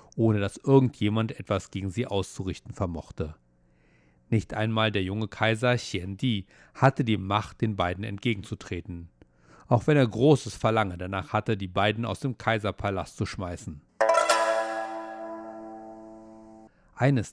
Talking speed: 125 wpm